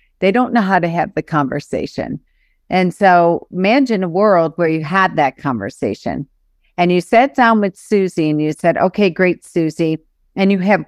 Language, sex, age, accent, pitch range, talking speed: English, female, 40-59, American, 165-210 Hz, 180 wpm